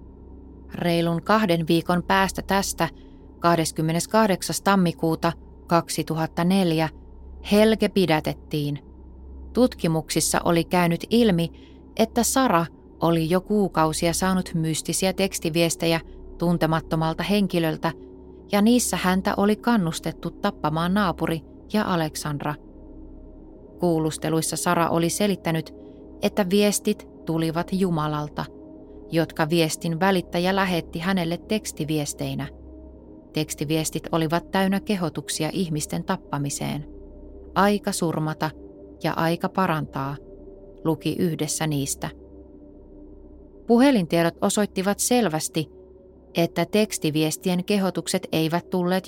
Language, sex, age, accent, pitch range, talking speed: Finnish, female, 20-39, native, 155-190 Hz, 85 wpm